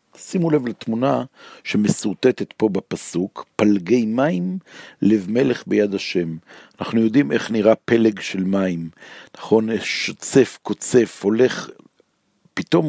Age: 50-69